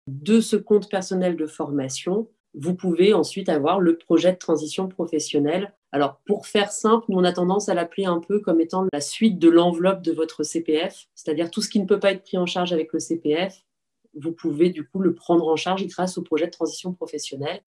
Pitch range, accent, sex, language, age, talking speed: 150-190 Hz, French, female, French, 30-49, 215 wpm